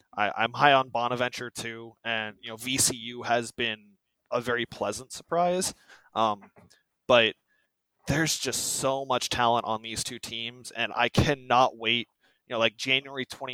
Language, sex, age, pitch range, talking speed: English, male, 20-39, 110-130 Hz, 150 wpm